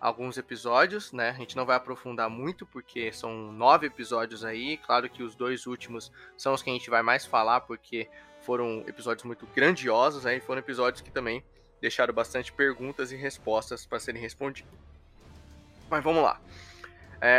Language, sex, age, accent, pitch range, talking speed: Portuguese, male, 20-39, Brazilian, 115-150 Hz, 175 wpm